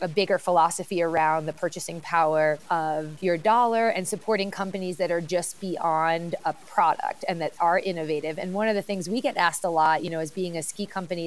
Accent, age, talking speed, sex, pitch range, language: American, 30-49, 215 wpm, female, 170-195 Hz, English